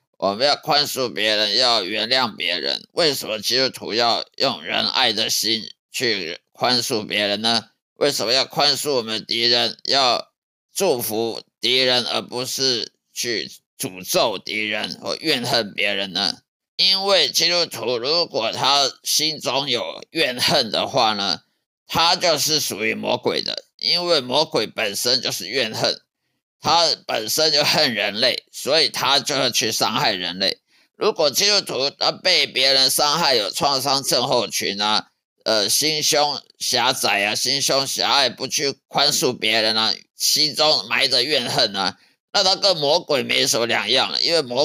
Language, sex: Chinese, male